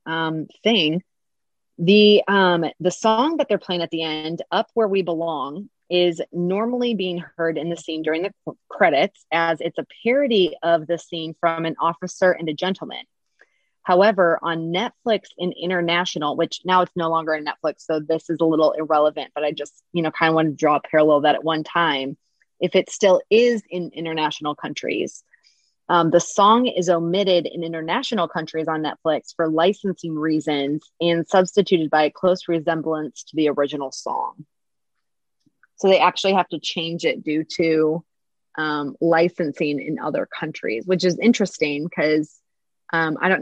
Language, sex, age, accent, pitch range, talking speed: English, female, 20-39, American, 155-180 Hz, 175 wpm